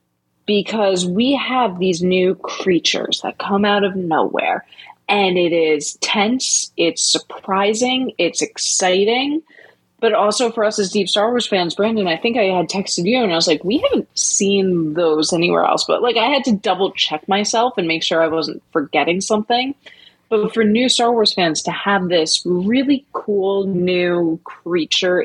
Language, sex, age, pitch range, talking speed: English, female, 20-39, 175-235 Hz, 175 wpm